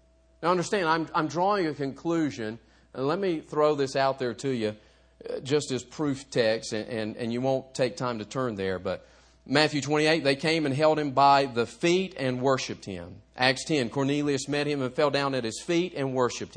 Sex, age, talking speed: male, 40-59, 210 wpm